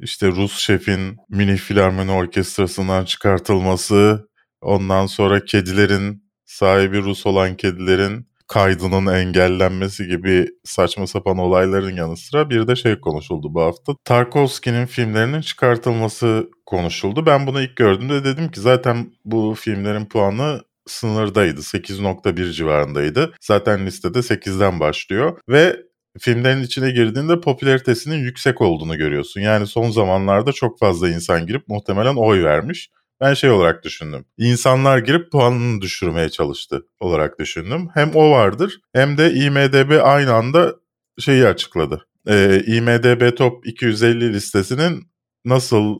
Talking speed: 125 wpm